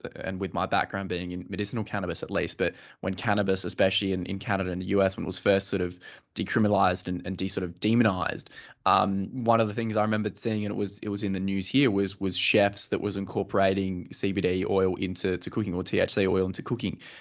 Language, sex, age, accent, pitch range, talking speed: English, male, 20-39, Australian, 95-105 Hz, 230 wpm